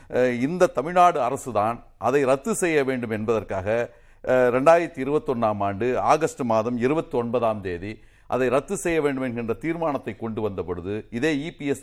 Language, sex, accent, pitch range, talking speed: Tamil, male, native, 125-175 Hz, 130 wpm